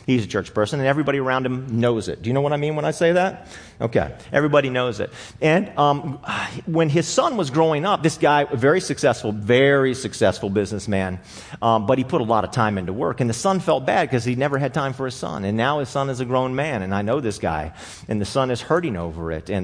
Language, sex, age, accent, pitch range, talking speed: English, male, 40-59, American, 100-145 Hz, 255 wpm